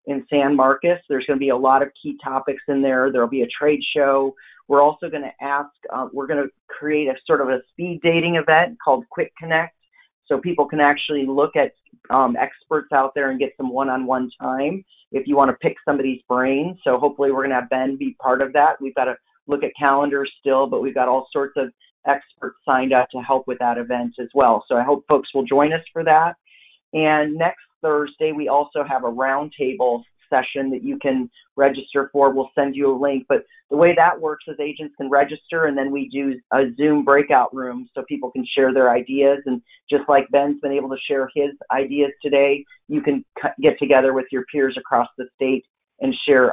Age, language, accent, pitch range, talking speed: 40-59, English, American, 135-150 Hz, 215 wpm